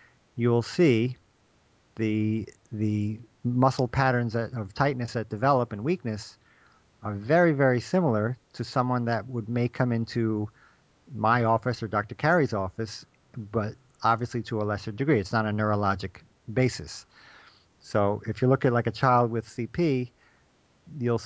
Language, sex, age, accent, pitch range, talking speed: English, male, 50-69, American, 110-130 Hz, 145 wpm